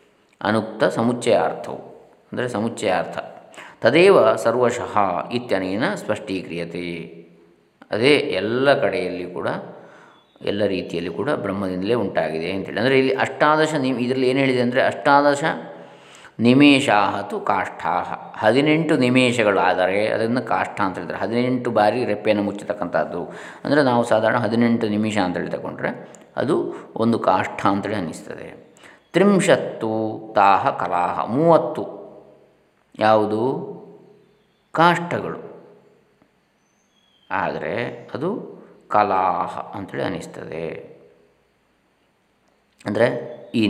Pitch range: 100-145 Hz